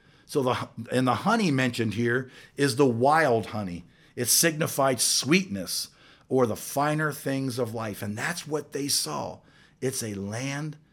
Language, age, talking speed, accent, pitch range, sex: English, 50-69, 155 wpm, American, 115-150 Hz, male